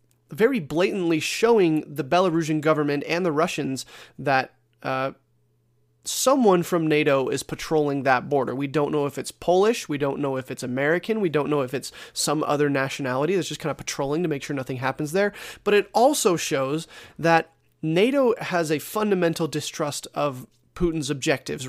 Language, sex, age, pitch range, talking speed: English, male, 30-49, 135-175 Hz, 170 wpm